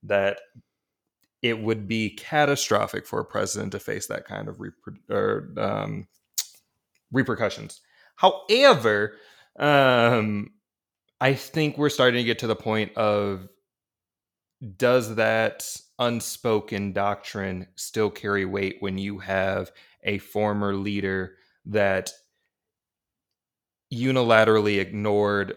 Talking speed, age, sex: 105 wpm, 20-39, male